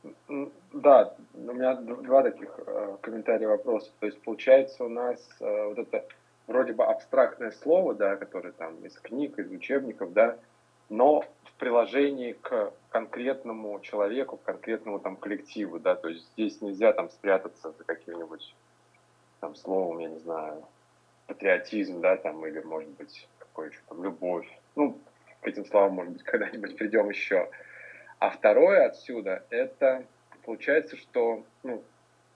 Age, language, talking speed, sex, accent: 20-39, Russian, 140 wpm, male, native